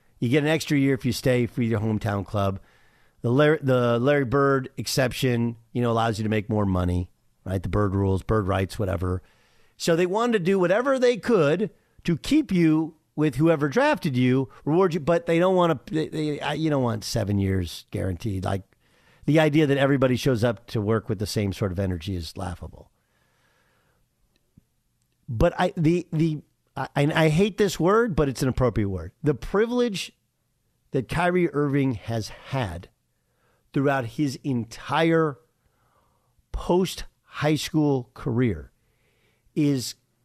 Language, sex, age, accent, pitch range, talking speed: English, male, 50-69, American, 115-155 Hz, 160 wpm